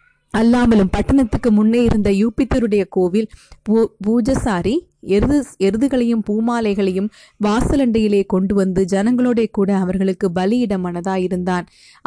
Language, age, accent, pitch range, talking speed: Tamil, 30-49, native, 195-230 Hz, 80 wpm